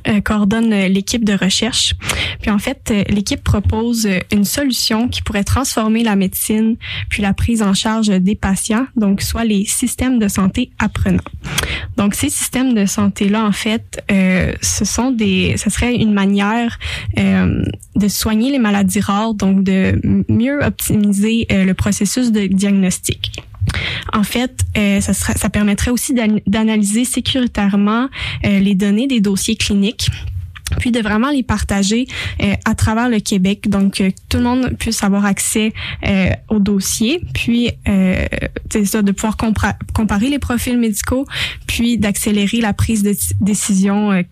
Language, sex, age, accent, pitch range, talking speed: French, female, 10-29, Canadian, 190-225 Hz, 160 wpm